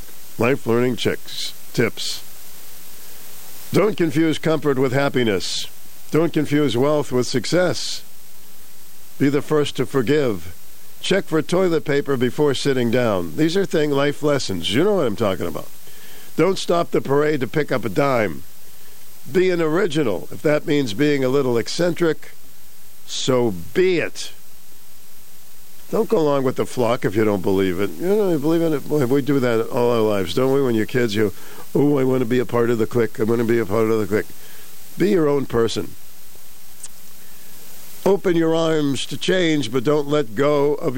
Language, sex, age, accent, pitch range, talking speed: English, male, 50-69, American, 115-150 Hz, 175 wpm